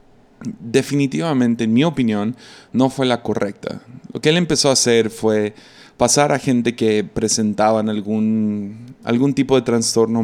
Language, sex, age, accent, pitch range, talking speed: Spanish, male, 20-39, Mexican, 105-120 Hz, 145 wpm